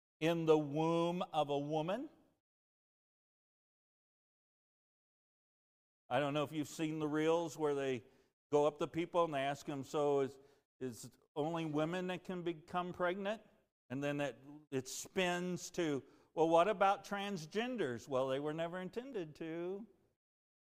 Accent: American